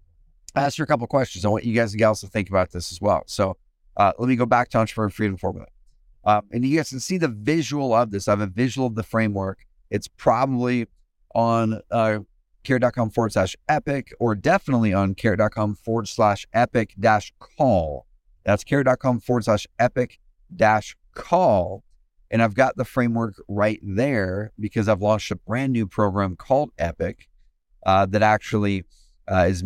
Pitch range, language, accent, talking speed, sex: 95-115 Hz, English, American, 180 wpm, male